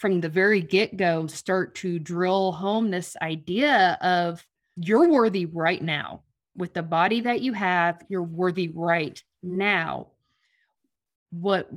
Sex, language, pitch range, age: female, English, 170-205 Hz, 30-49